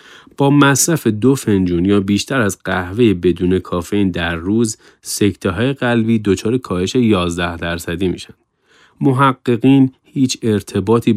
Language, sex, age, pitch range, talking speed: Persian, male, 30-49, 95-120 Hz, 125 wpm